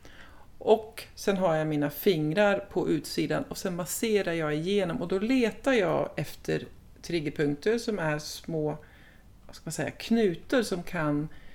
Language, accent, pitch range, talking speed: Swedish, native, 150-215 Hz, 150 wpm